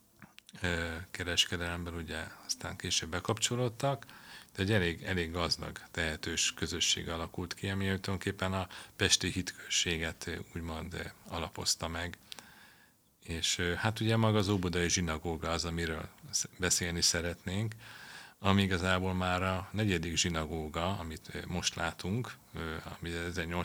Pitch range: 85-100 Hz